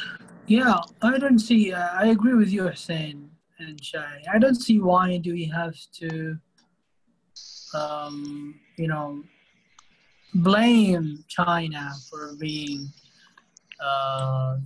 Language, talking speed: English, 115 wpm